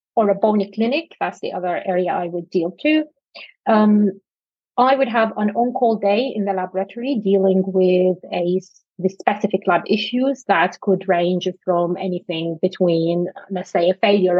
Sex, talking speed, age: female, 165 wpm, 30-49